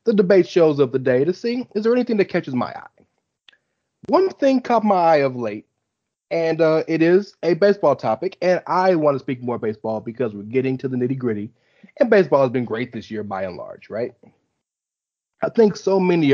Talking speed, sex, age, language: 210 wpm, male, 30-49, English